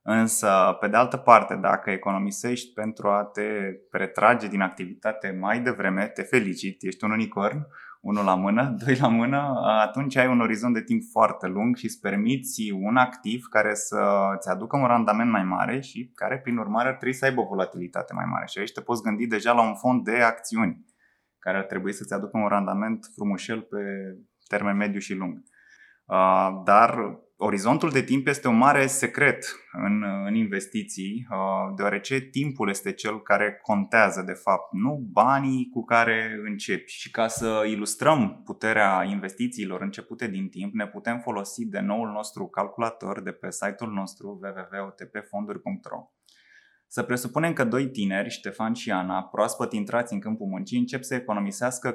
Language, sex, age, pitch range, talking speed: Romanian, male, 20-39, 100-130 Hz, 165 wpm